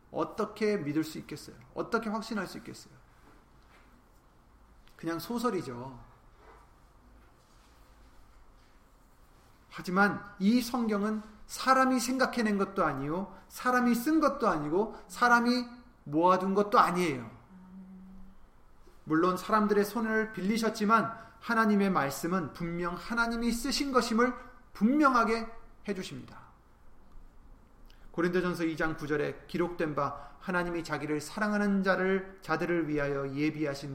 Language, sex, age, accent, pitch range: Korean, male, 30-49, native, 150-215 Hz